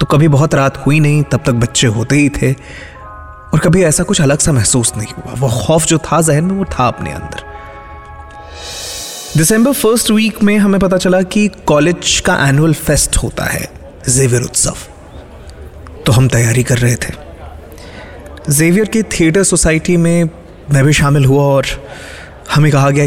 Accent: native